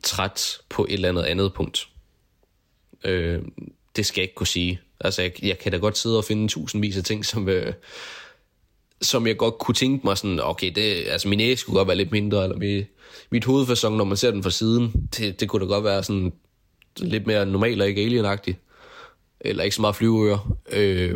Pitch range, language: 100-120 Hz, Danish